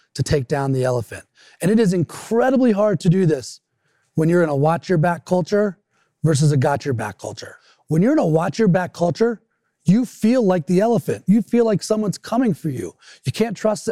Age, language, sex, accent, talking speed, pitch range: 30-49, English, male, American, 190 wpm, 145-185 Hz